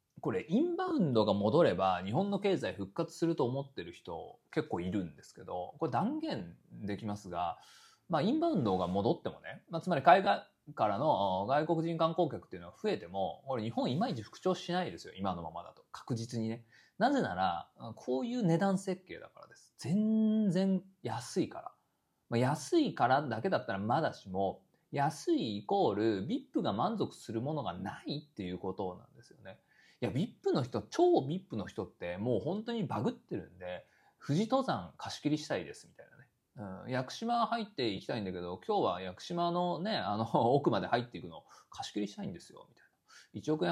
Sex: male